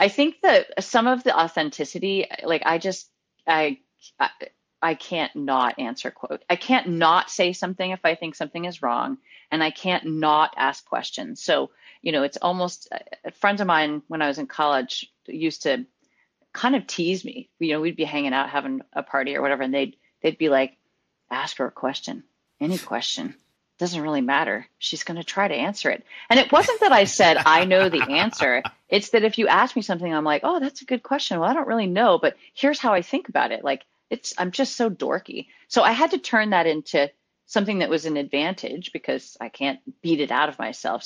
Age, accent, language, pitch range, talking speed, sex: 30-49, American, English, 155-235 Hz, 215 wpm, female